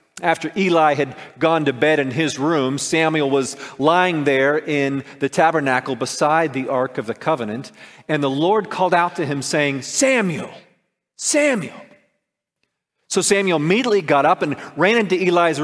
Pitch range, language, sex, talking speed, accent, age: 140-190 Hz, English, male, 155 wpm, American, 40-59